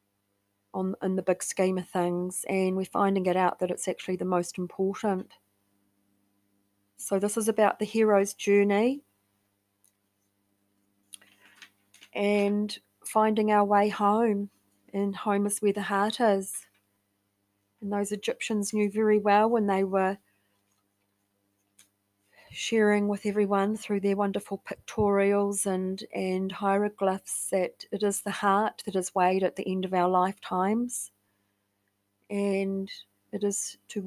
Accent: Australian